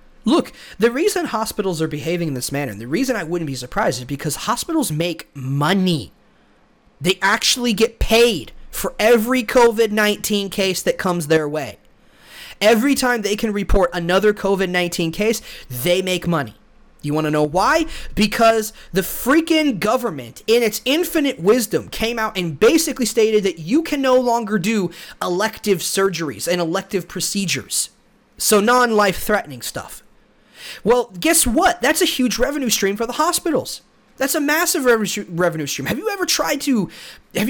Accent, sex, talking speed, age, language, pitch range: American, male, 155 wpm, 30-49, English, 180-255 Hz